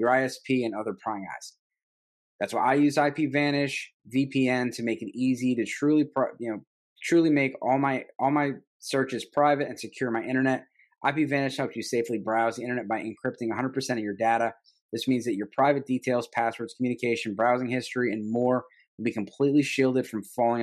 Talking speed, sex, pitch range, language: 185 wpm, male, 115-135 Hz, English